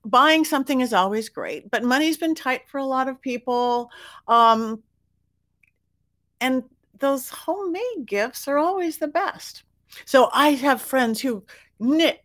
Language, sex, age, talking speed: English, female, 50-69, 140 wpm